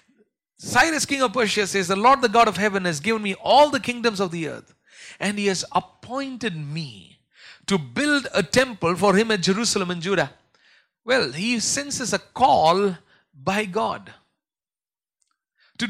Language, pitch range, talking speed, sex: English, 190-250 Hz, 160 wpm, male